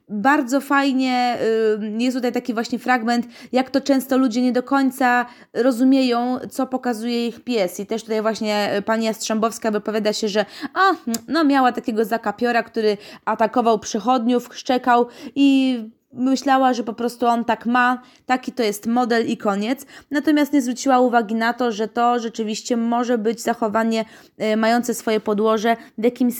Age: 20-39